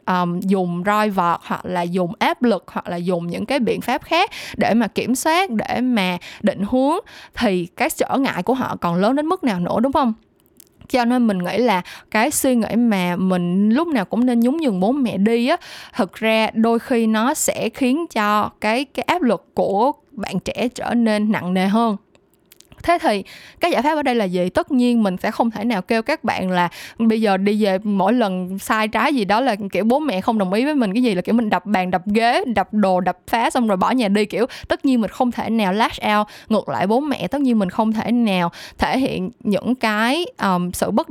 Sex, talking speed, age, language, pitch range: female, 235 wpm, 20-39, Vietnamese, 190-245 Hz